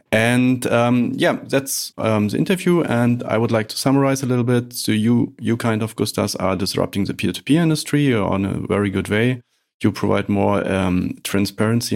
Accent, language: German, English